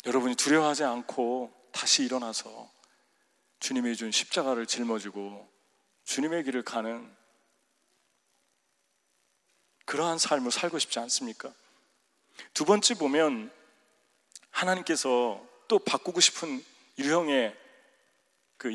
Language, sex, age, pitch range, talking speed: English, male, 40-59, 120-180 Hz, 85 wpm